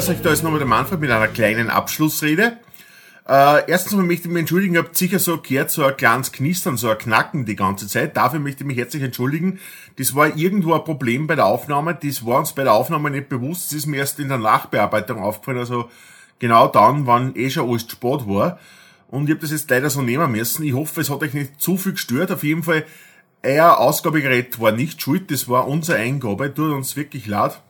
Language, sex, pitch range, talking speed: German, male, 130-175 Hz, 230 wpm